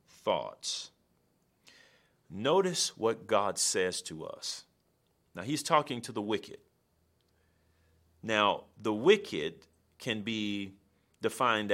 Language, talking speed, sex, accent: English, 95 wpm, male, American